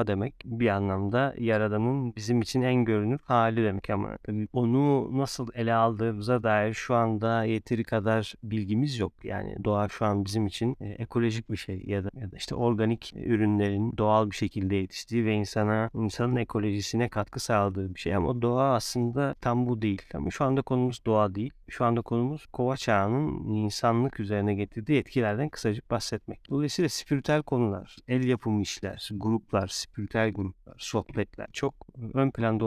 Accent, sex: native, male